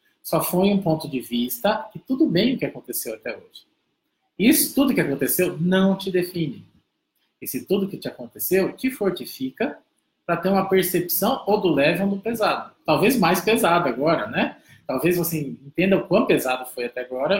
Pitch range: 155-210 Hz